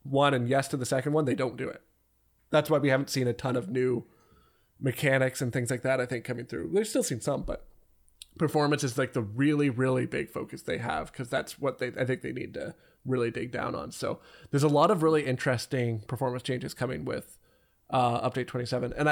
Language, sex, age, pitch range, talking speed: English, male, 20-39, 125-145 Hz, 225 wpm